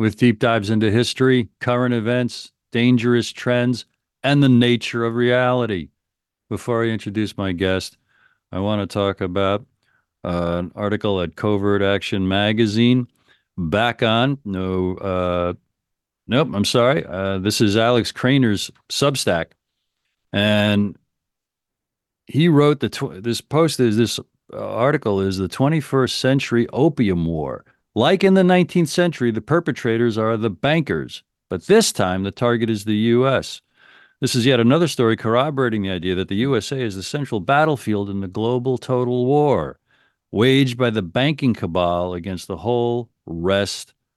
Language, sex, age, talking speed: English, male, 50-69, 145 wpm